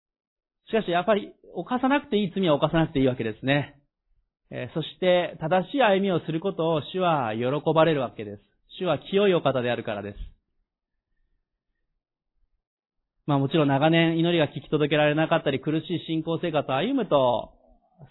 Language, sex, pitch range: Japanese, male, 140-180 Hz